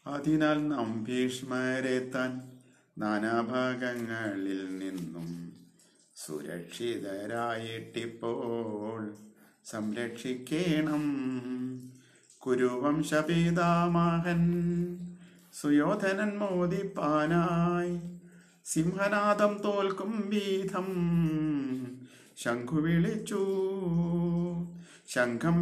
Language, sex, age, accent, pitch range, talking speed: Malayalam, male, 50-69, native, 120-175 Hz, 30 wpm